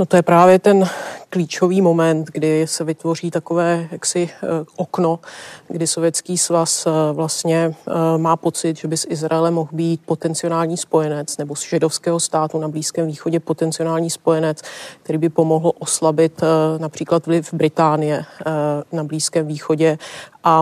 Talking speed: 135 wpm